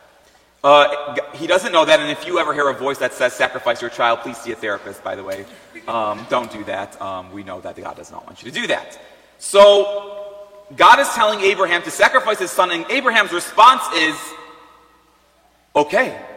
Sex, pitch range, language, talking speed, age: male, 160-250 Hz, English, 200 wpm, 30-49